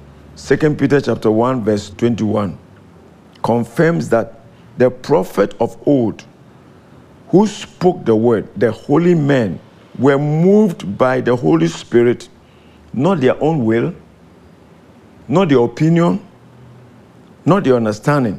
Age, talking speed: 50-69, 115 wpm